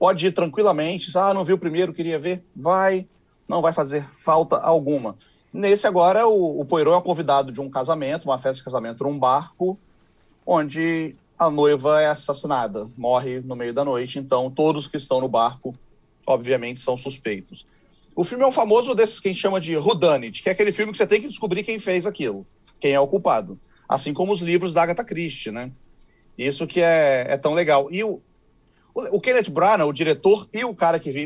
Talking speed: 200 wpm